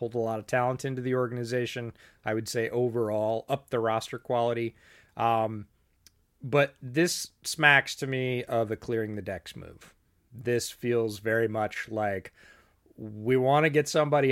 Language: English